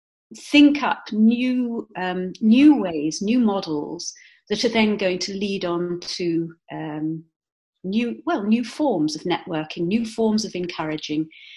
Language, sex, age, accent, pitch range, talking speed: Italian, female, 40-59, British, 170-225 Hz, 140 wpm